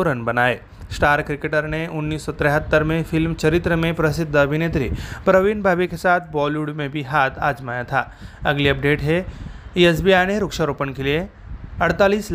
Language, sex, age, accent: Marathi, male, 30-49, native